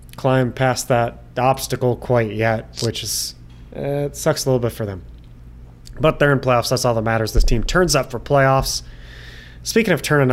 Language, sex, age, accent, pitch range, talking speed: English, male, 30-49, American, 115-140 Hz, 190 wpm